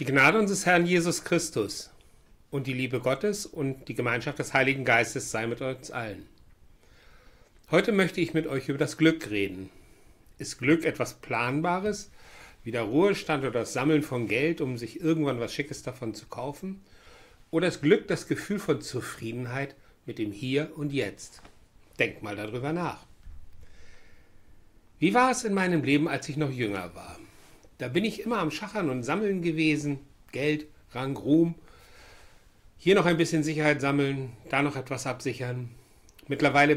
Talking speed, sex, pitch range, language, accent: 160 wpm, male, 120-160 Hz, German, German